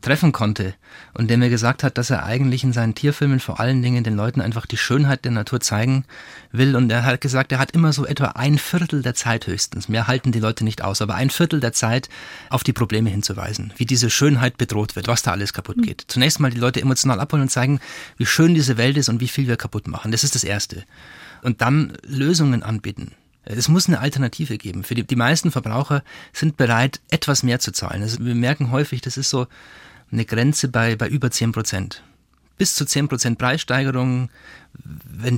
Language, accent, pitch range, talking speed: German, German, 115-145 Hz, 215 wpm